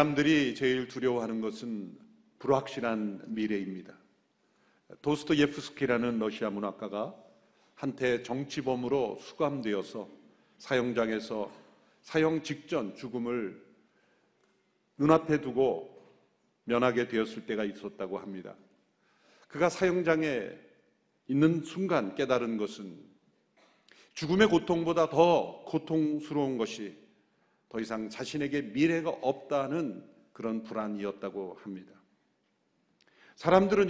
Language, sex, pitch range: Korean, male, 110-160 Hz